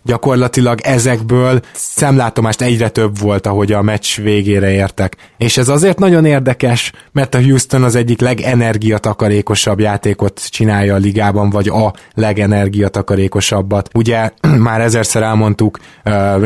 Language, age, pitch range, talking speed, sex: Hungarian, 20-39, 105-115 Hz, 125 wpm, male